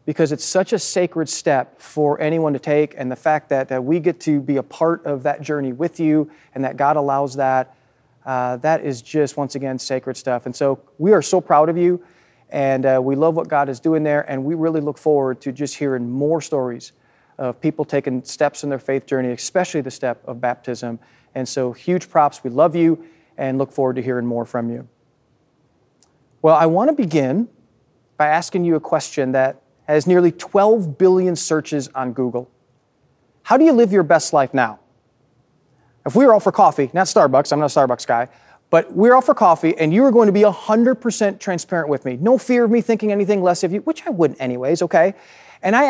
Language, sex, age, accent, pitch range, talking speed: English, male, 40-59, American, 130-180 Hz, 215 wpm